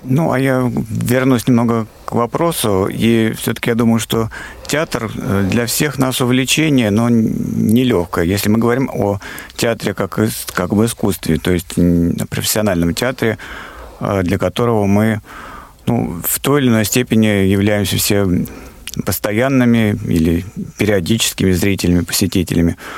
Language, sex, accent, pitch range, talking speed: Russian, male, native, 100-125 Hz, 130 wpm